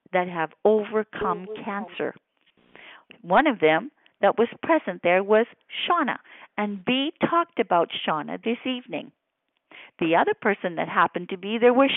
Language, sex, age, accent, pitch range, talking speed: English, female, 50-69, American, 190-255 Hz, 145 wpm